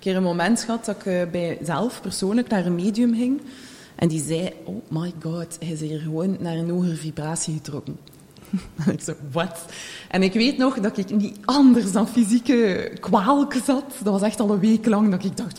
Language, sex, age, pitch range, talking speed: English, female, 20-39, 175-230 Hz, 210 wpm